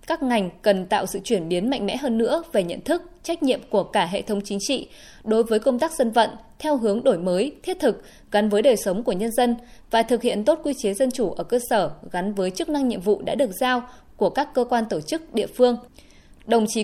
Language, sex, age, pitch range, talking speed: Vietnamese, female, 20-39, 205-265 Hz, 255 wpm